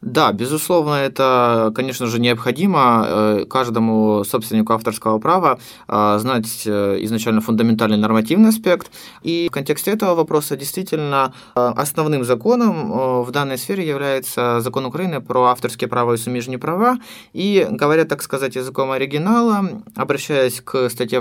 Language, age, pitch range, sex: Ukrainian, 20-39, 120-165 Hz, male